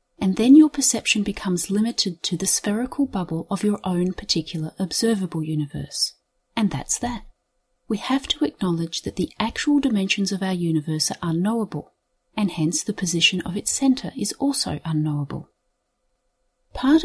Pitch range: 175-235 Hz